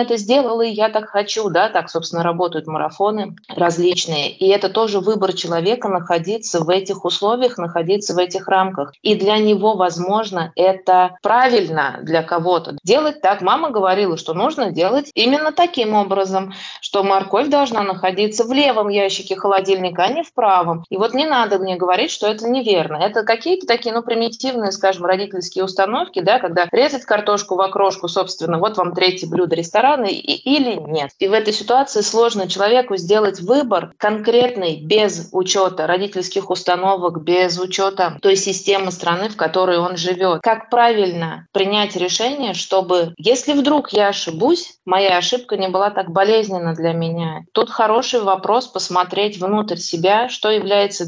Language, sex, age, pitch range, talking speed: Russian, female, 20-39, 180-215 Hz, 155 wpm